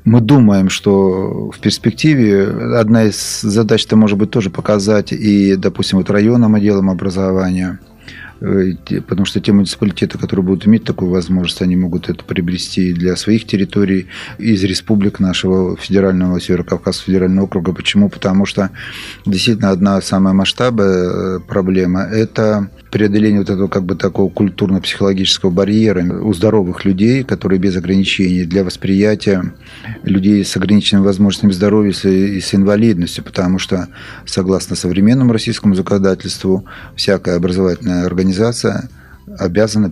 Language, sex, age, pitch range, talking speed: Russian, male, 30-49, 95-105 Hz, 130 wpm